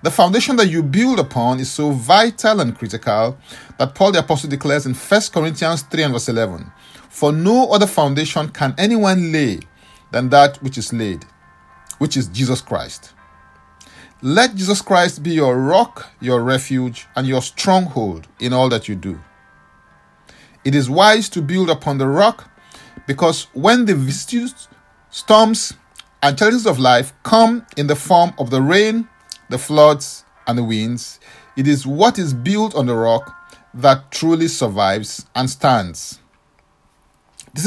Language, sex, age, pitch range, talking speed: English, male, 50-69, 120-180 Hz, 155 wpm